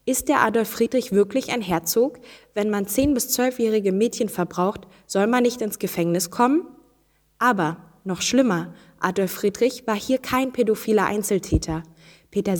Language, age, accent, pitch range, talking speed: German, 10-29, German, 175-225 Hz, 150 wpm